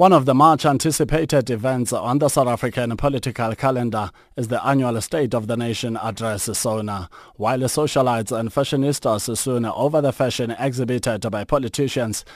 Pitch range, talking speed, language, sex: 110-130 Hz, 150 wpm, English, male